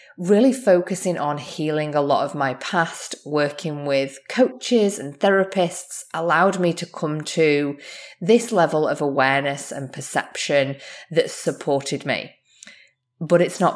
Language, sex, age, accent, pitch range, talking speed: English, female, 20-39, British, 140-180 Hz, 135 wpm